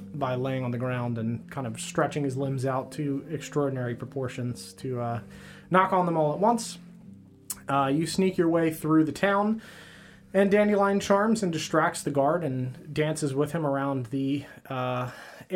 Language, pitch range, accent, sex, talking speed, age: English, 135-185 Hz, American, male, 175 wpm, 30-49